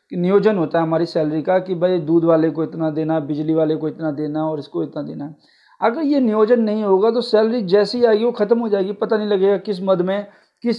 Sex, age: male, 50-69